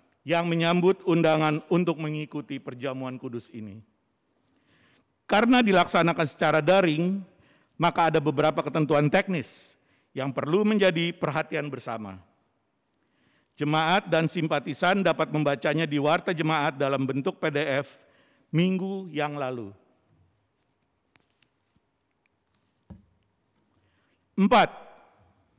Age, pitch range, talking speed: 50-69, 145-190 Hz, 85 wpm